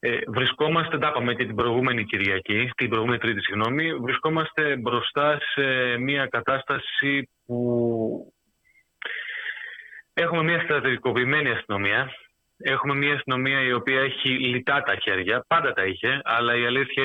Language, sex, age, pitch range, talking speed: Greek, male, 30-49, 115-150 Hz, 125 wpm